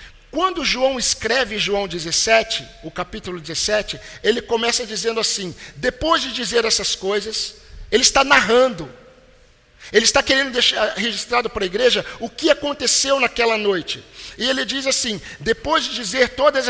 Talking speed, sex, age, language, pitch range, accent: 145 wpm, male, 50-69, Portuguese, 210-270 Hz, Brazilian